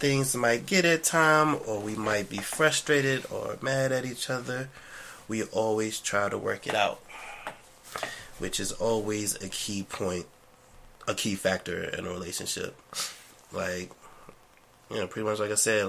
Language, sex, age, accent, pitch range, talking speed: English, male, 20-39, American, 95-110 Hz, 160 wpm